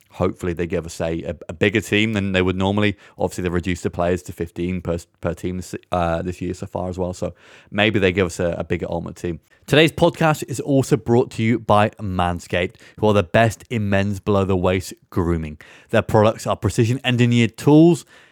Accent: British